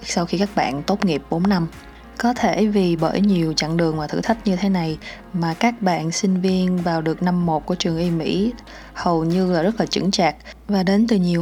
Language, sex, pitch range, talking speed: Vietnamese, female, 170-200 Hz, 235 wpm